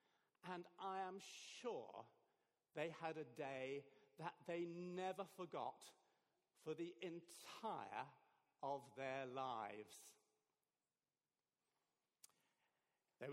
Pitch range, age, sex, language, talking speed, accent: 160-215 Hz, 50-69, male, English, 85 wpm, British